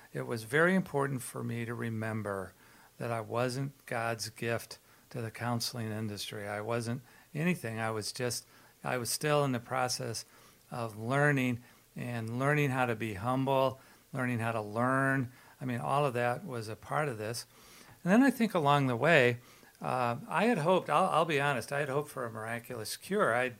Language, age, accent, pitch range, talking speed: English, 50-69, American, 115-140 Hz, 190 wpm